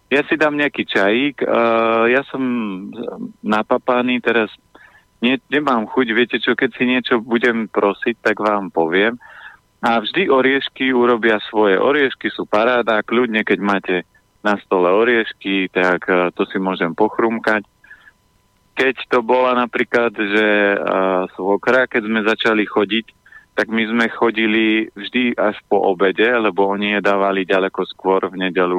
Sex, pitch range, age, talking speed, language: male, 95-115 Hz, 30-49, 145 wpm, Slovak